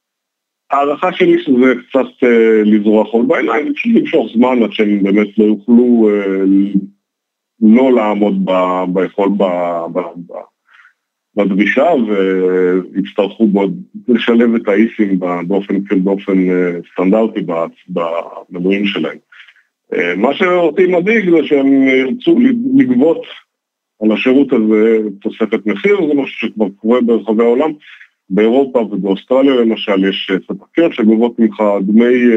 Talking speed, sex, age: 110 wpm, male, 50-69